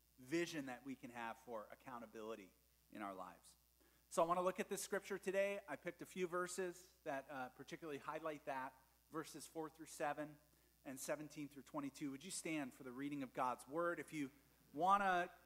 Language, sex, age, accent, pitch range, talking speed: English, male, 40-59, American, 125-190 Hz, 190 wpm